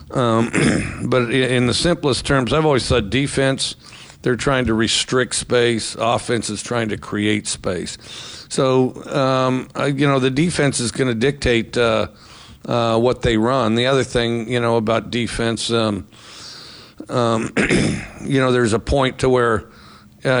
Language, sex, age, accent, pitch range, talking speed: English, male, 50-69, American, 115-130 Hz, 150 wpm